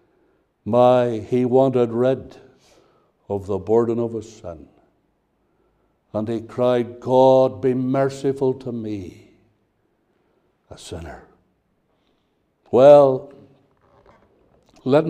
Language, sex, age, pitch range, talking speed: English, male, 60-79, 125-175 Hz, 85 wpm